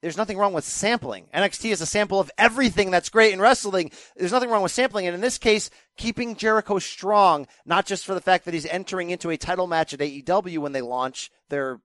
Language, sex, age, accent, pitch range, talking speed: English, male, 30-49, American, 170-230 Hz, 230 wpm